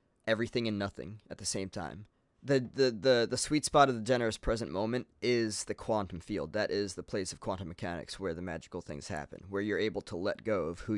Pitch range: 90-110 Hz